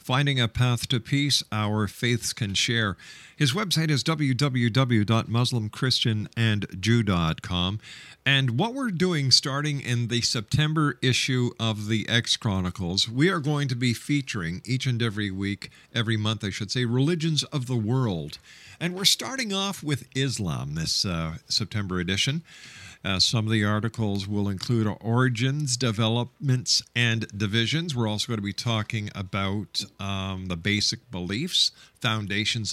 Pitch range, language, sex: 105-145 Hz, English, male